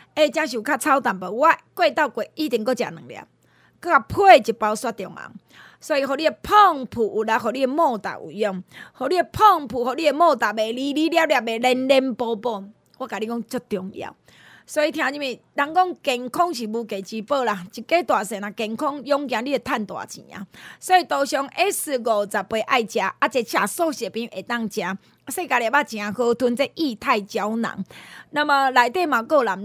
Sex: female